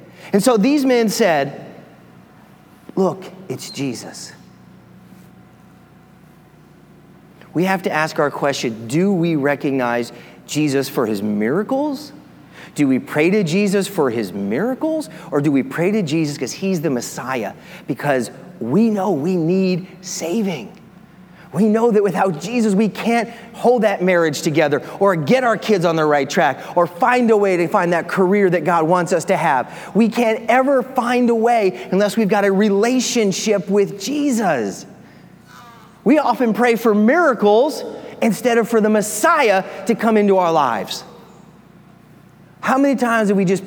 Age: 30-49